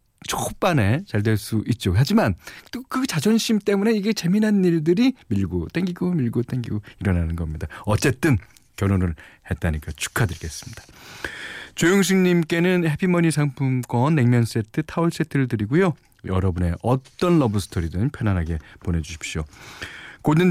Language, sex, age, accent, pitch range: Korean, male, 40-59, native, 100-160 Hz